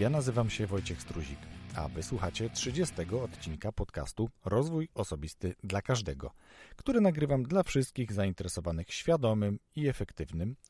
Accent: native